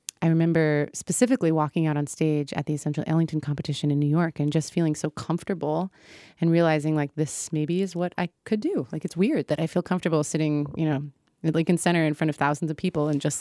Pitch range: 150-165 Hz